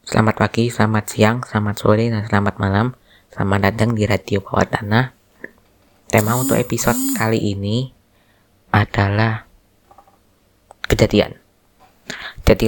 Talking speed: 110 wpm